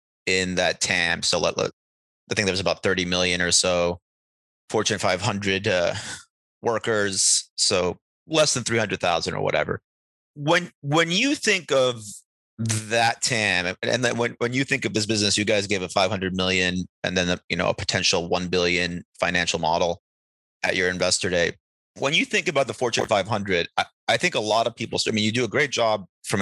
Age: 30-49